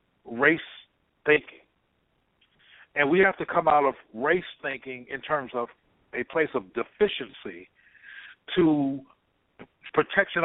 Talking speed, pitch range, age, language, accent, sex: 115 wpm, 125-155 Hz, 50-69, English, American, male